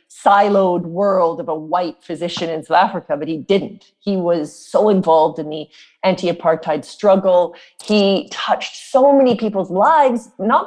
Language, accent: English, American